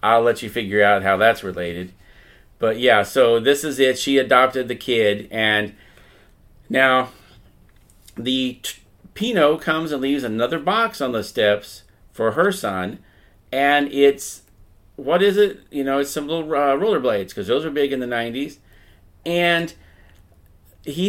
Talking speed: 155 wpm